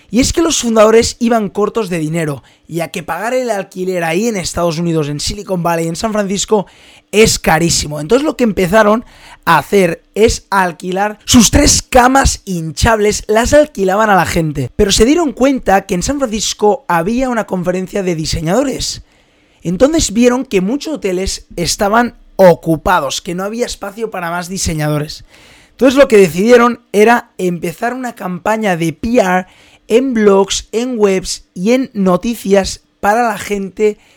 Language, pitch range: Spanish, 175-225 Hz